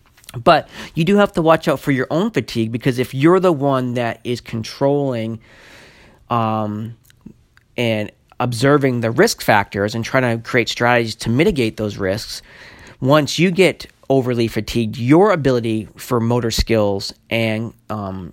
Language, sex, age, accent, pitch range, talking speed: English, male, 40-59, American, 110-135 Hz, 155 wpm